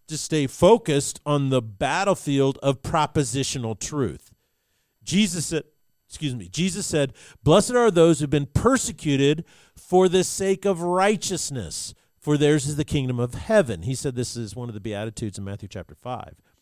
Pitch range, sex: 135-185 Hz, male